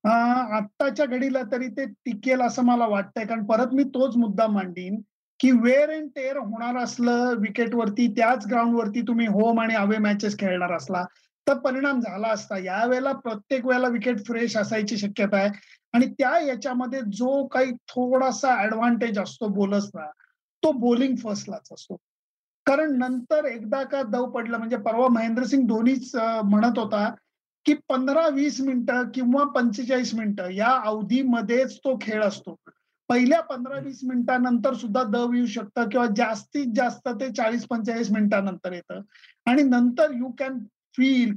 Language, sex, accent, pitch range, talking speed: Marathi, male, native, 220-260 Hz, 145 wpm